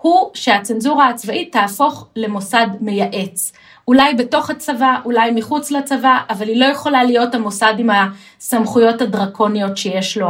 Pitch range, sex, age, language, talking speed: 205-265 Hz, female, 30-49, Hebrew, 135 wpm